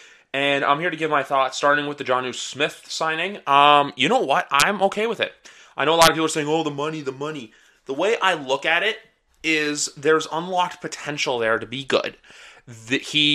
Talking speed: 220 wpm